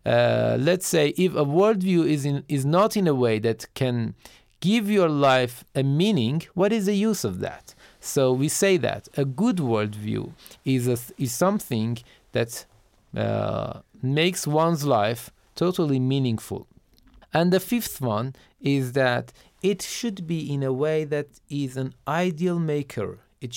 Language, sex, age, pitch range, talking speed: Persian, male, 40-59, 130-180 Hz, 160 wpm